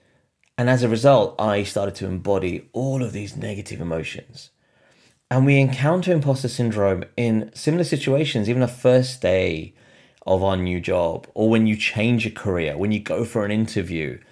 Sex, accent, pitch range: male, British, 95-130 Hz